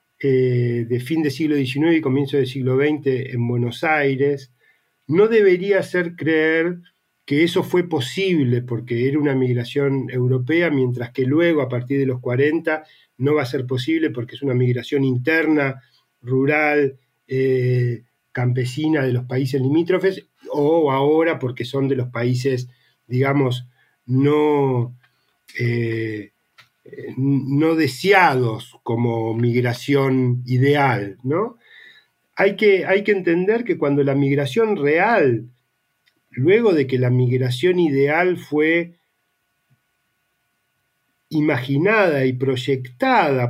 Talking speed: 120 wpm